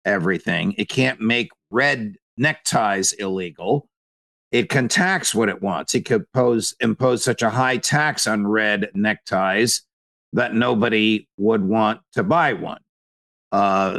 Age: 50-69